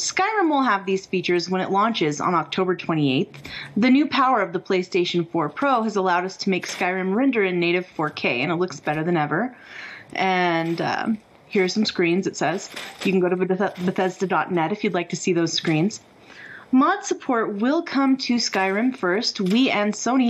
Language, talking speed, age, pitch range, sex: English, 190 wpm, 30-49, 180-235 Hz, female